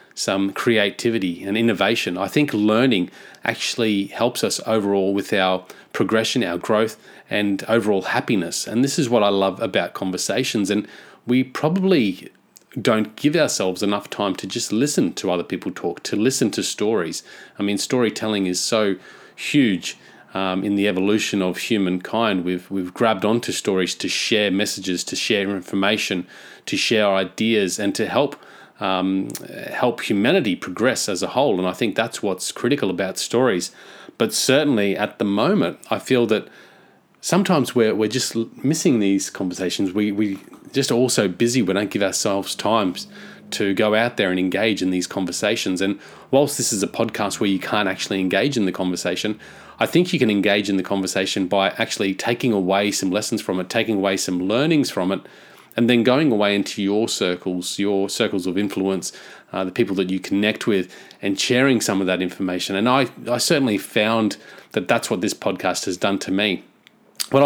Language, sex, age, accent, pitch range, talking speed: English, male, 30-49, Australian, 95-115 Hz, 180 wpm